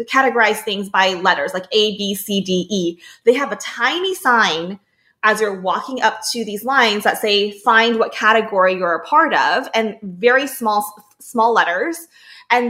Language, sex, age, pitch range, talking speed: English, female, 20-39, 195-250 Hz, 175 wpm